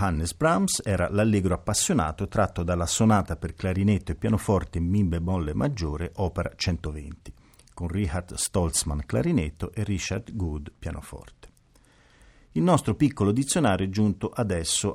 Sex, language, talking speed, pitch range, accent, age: male, Italian, 135 wpm, 85-105 Hz, native, 40-59